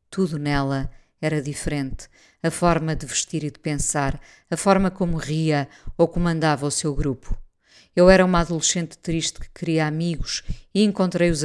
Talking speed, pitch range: 155 wpm, 145-170 Hz